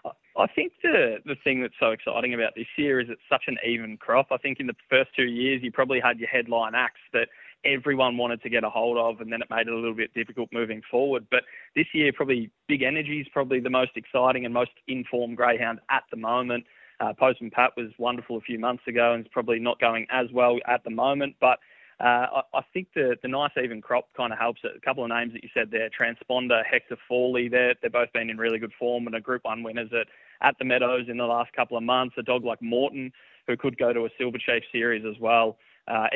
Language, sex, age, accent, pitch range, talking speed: English, male, 20-39, Australian, 115-130 Hz, 245 wpm